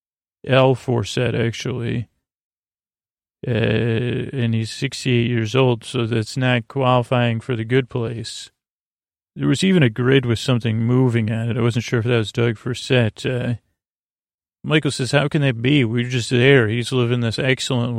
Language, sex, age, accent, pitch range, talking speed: English, male, 40-59, American, 115-130 Hz, 165 wpm